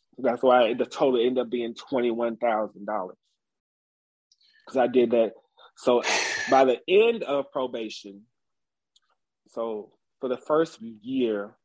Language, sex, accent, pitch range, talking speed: English, male, American, 115-135 Hz, 120 wpm